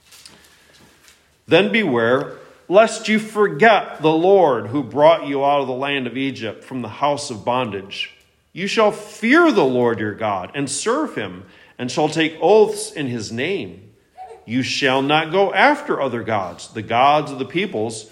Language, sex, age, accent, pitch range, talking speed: English, male, 40-59, American, 115-160 Hz, 165 wpm